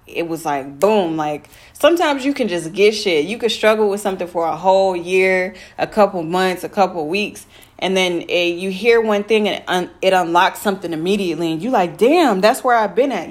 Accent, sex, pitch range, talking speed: American, female, 160-205 Hz, 215 wpm